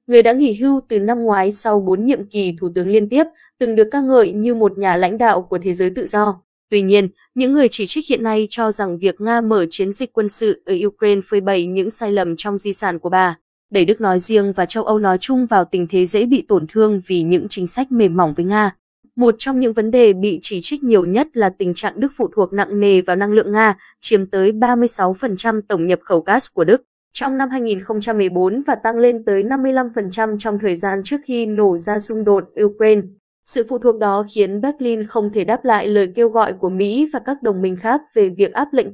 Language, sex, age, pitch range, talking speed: Vietnamese, female, 20-39, 195-235 Hz, 240 wpm